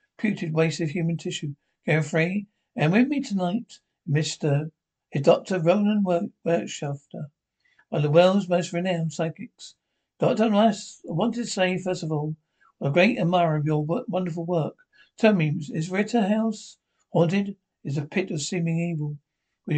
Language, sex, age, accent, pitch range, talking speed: English, male, 60-79, British, 160-185 Hz, 150 wpm